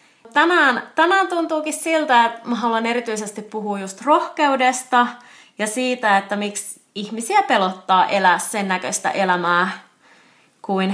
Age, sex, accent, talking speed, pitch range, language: 20-39, female, native, 120 wpm, 195-270 Hz, Finnish